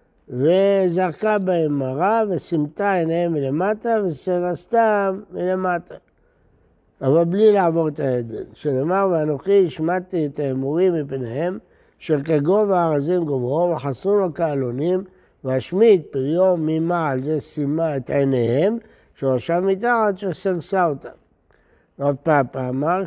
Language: Hebrew